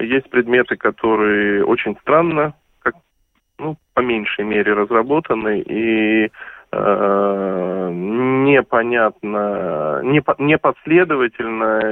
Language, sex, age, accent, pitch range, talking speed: Russian, male, 20-39, native, 110-150 Hz, 75 wpm